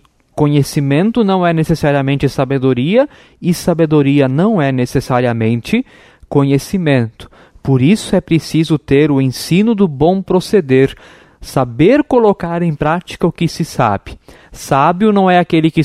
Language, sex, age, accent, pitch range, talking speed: Portuguese, male, 20-39, Brazilian, 140-215 Hz, 130 wpm